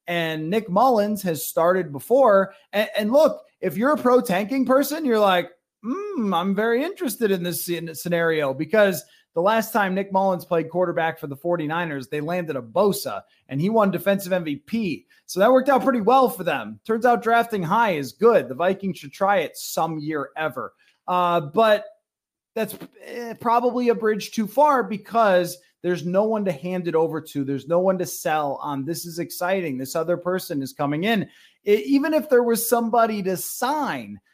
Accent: American